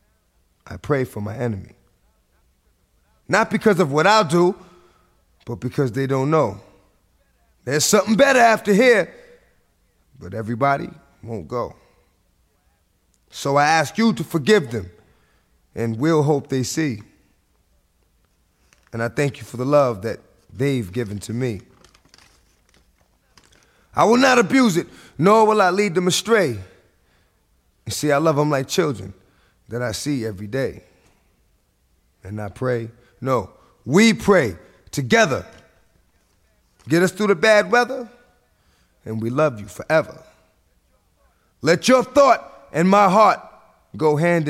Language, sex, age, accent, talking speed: English, male, 30-49, American, 130 wpm